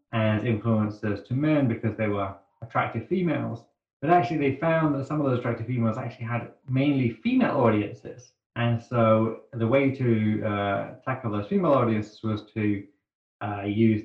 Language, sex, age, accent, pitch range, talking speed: English, male, 30-49, British, 105-125 Hz, 160 wpm